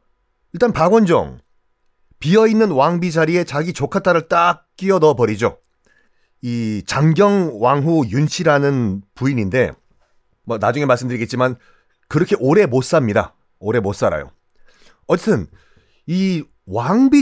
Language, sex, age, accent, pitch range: Korean, male, 40-59, native, 145-225 Hz